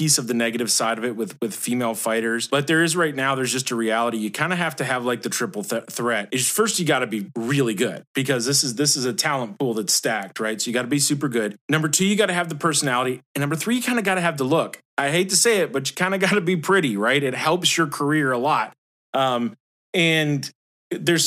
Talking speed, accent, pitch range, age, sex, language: 280 wpm, American, 125-185 Hz, 30-49, male, English